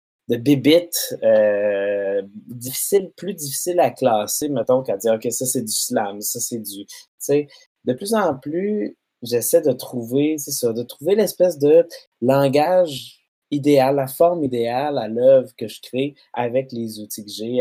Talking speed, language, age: 160 wpm, French, 20-39